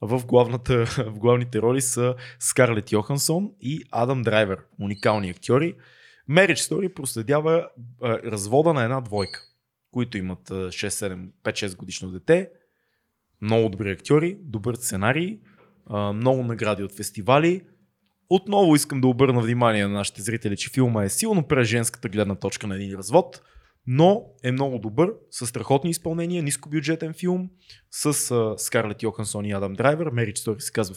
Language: Bulgarian